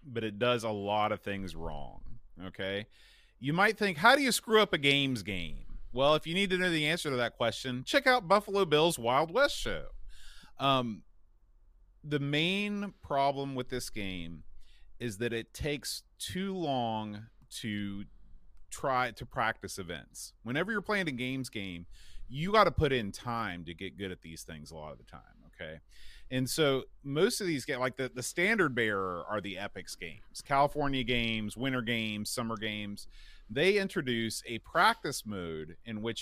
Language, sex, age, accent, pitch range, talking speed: English, male, 30-49, American, 105-150 Hz, 175 wpm